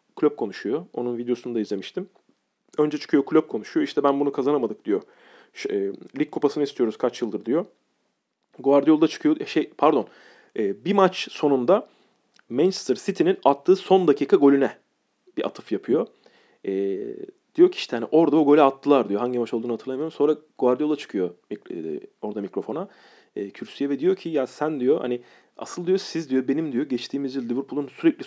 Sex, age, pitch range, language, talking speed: male, 40-59, 125-185 Hz, Turkish, 170 wpm